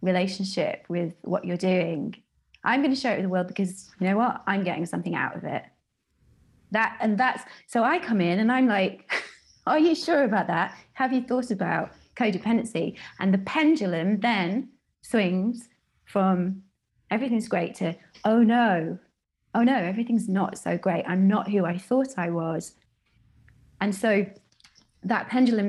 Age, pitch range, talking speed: 30-49, 180-225 Hz, 165 wpm